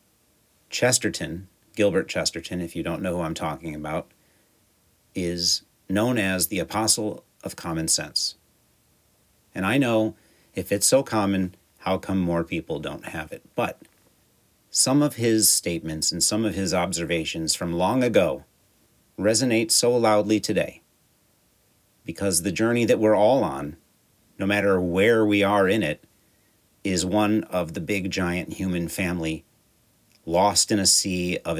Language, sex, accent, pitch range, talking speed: English, male, American, 90-110 Hz, 145 wpm